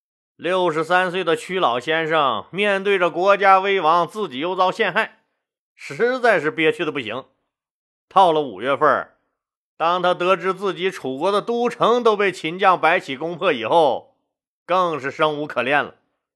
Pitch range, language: 160-215 Hz, Chinese